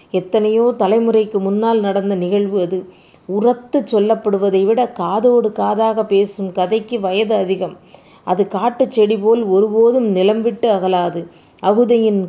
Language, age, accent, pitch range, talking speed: Tamil, 30-49, native, 195-230 Hz, 105 wpm